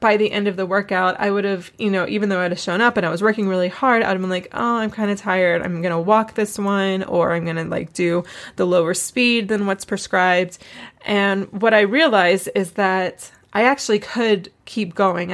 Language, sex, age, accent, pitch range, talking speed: English, female, 20-39, American, 180-205 Hz, 240 wpm